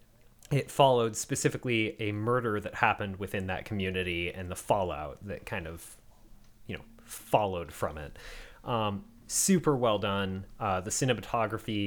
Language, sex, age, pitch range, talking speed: English, male, 30-49, 95-120 Hz, 140 wpm